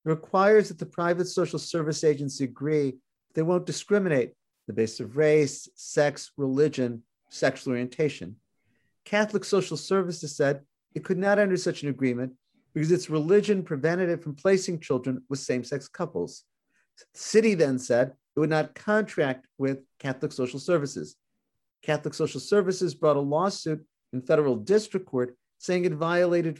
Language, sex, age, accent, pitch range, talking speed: English, male, 50-69, American, 145-195 Hz, 150 wpm